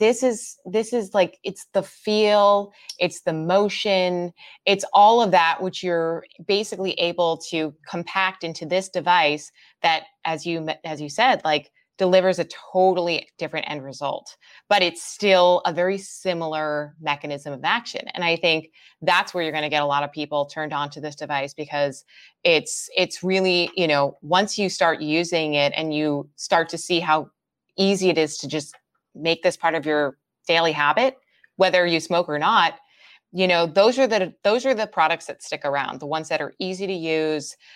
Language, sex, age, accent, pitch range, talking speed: English, female, 20-39, American, 155-190 Hz, 185 wpm